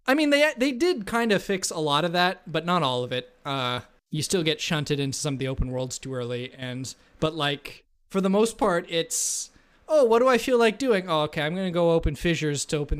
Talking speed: 255 wpm